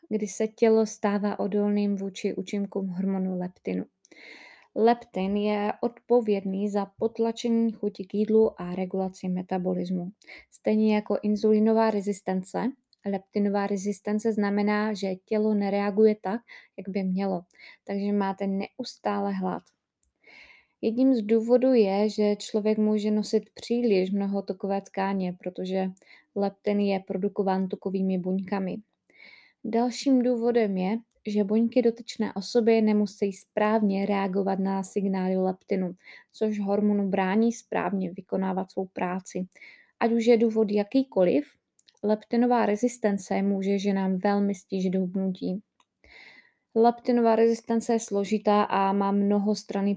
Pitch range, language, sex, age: 195-220 Hz, Czech, female, 20-39